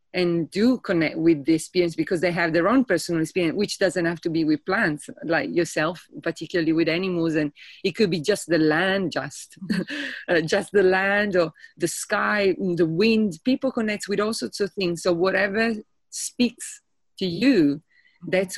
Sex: female